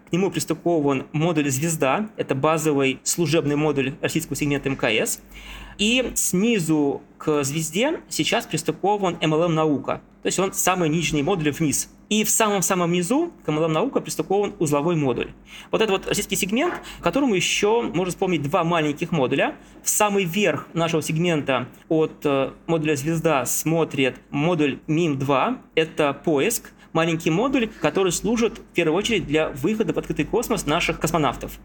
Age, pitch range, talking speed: 20-39, 145-185 Hz, 140 wpm